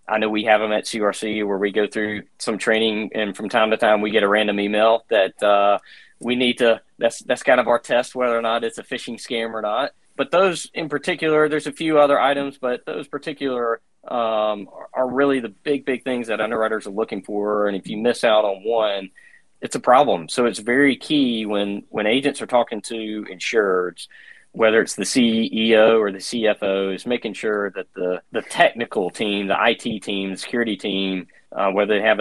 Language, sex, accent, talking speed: English, male, American, 210 wpm